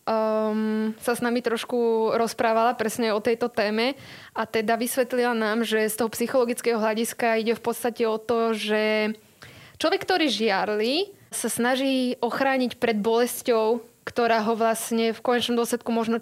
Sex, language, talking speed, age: female, Slovak, 150 wpm, 20-39